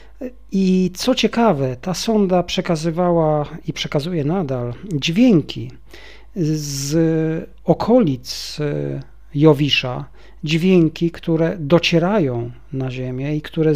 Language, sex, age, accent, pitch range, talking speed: Polish, male, 40-59, native, 130-165 Hz, 85 wpm